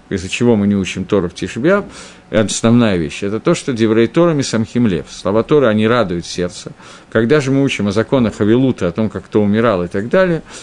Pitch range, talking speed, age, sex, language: 105-135 Hz, 205 wpm, 50-69, male, Russian